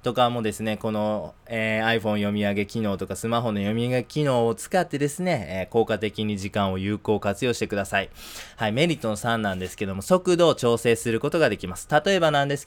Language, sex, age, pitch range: Japanese, male, 20-39, 105-130 Hz